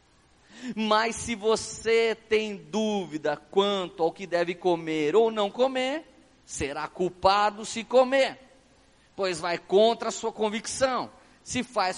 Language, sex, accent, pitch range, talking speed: Portuguese, male, Brazilian, 215-265 Hz, 125 wpm